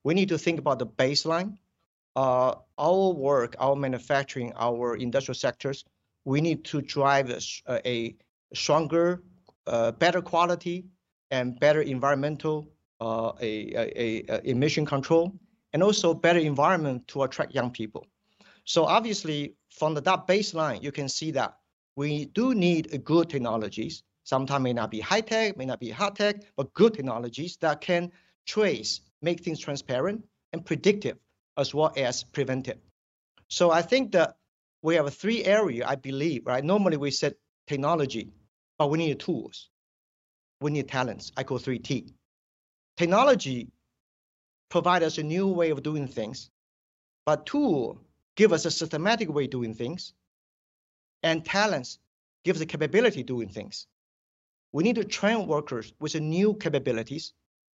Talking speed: 155 wpm